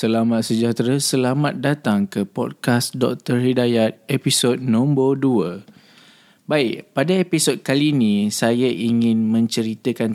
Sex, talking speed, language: male, 110 wpm, Indonesian